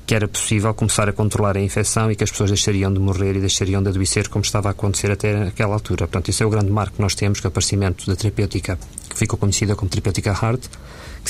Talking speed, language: 255 wpm, Portuguese